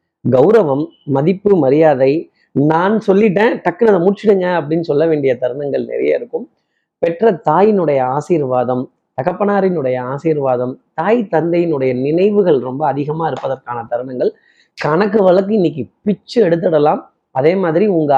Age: 30-49